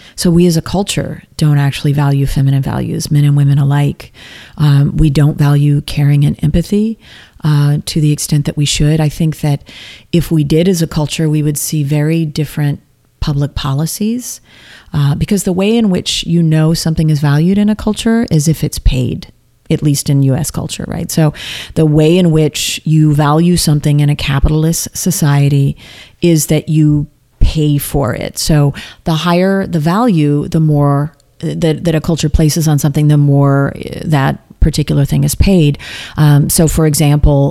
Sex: female